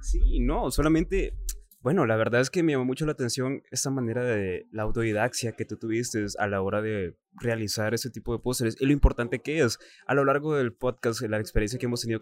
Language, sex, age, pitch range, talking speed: Spanish, male, 20-39, 110-140 Hz, 225 wpm